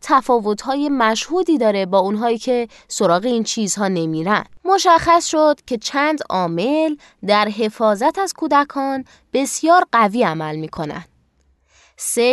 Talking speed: 120 wpm